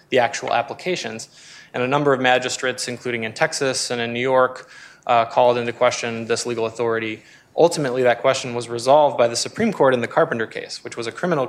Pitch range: 120-135 Hz